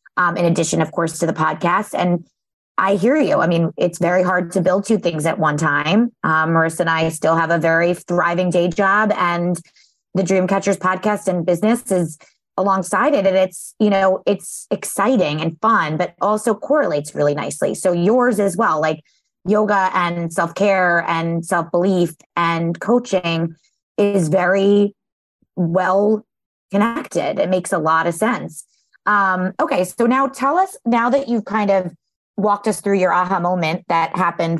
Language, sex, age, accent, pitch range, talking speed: English, female, 20-39, American, 175-205 Hz, 170 wpm